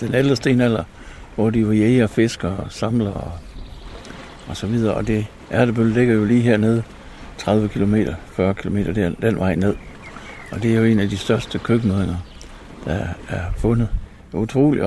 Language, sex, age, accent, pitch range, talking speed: Danish, male, 60-79, native, 100-130 Hz, 170 wpm